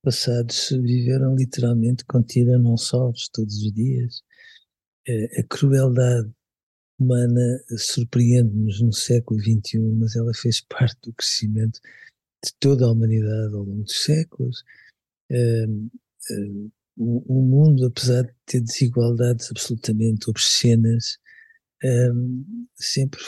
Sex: male